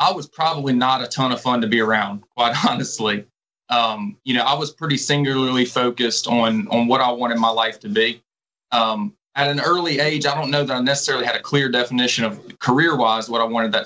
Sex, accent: male, American